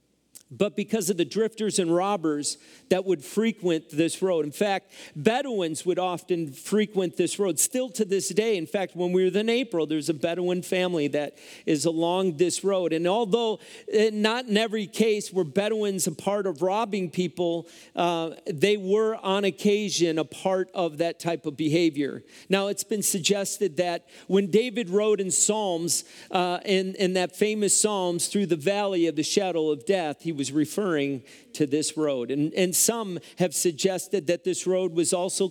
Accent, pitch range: American, 165-210 Hz